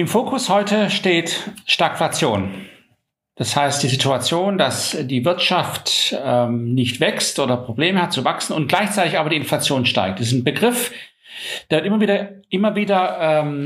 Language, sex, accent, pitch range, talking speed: German, male, German, 150-200 Hz, 165 wpm